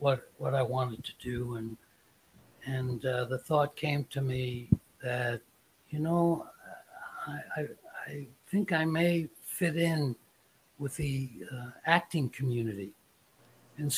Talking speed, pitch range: 135 wpm, 130-155 Hz